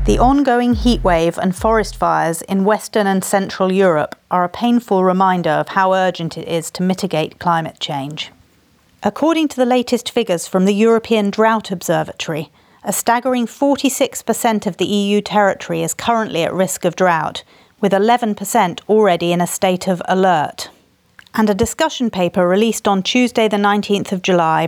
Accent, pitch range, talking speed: British, 175-220 Hz, 160 wpm